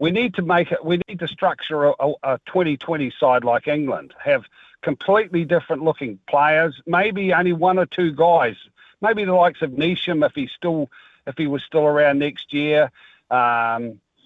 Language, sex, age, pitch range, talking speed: English, male, 50-69, 145-190 Hz, 175 wpm